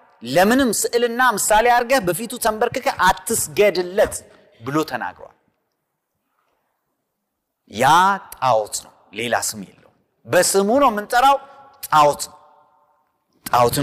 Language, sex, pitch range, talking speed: Amharic, male, 155-245 Hz, 80 wpm